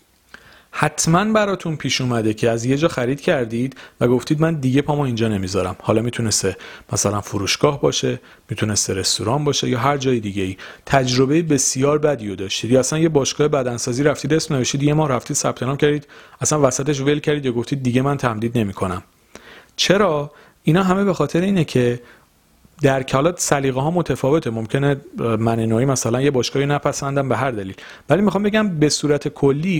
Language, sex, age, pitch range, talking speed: Persian, male, 40-59, 110-145 Hz, 175 wpm